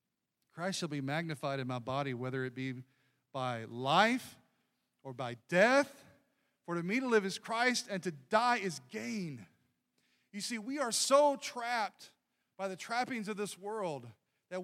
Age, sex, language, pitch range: 40-59, male, English, 135-220 Hz